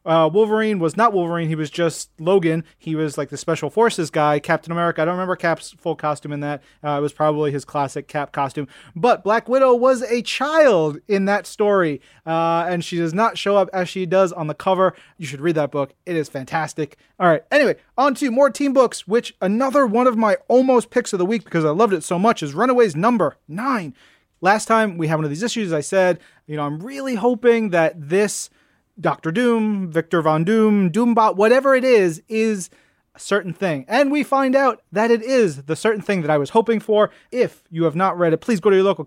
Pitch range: 155-215 Hz